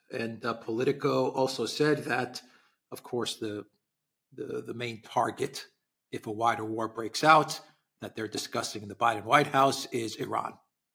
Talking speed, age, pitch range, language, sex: 160 wpm, 40-59, 105-140 Hz, English, male